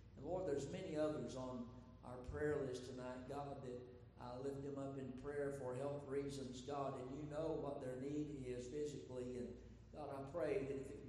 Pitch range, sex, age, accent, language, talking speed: 125-140 Hz, male, 50-69, American, English, 200 wpm